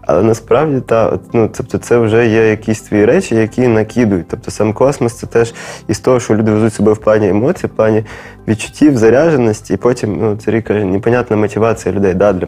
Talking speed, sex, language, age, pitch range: 205 wpm, male, Ukrainian, 20-39, 100-115 Hz